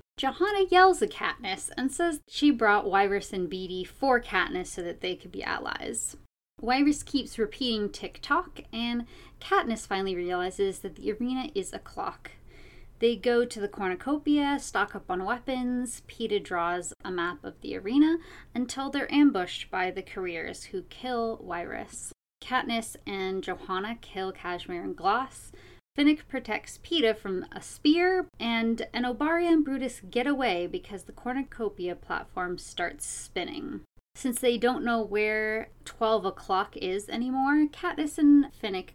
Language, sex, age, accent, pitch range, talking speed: English, female, 20-39, American, 195-285 Hz, 150 wpm